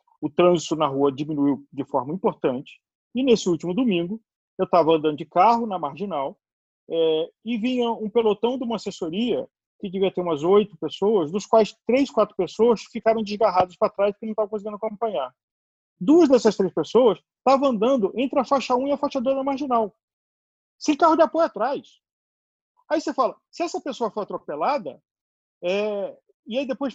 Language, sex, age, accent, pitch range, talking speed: Portuguese, male, 40-59, Brazilian, 185-265 Hz, 180 wpm